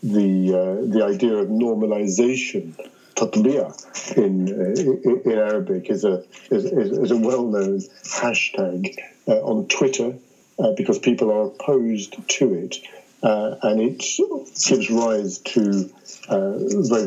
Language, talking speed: English, 125 wpm